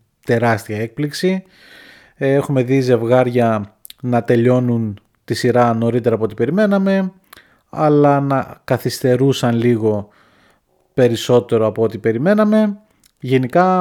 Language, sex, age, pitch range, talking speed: Greek, male, 30-49, 115-150 Hz, 95 wpm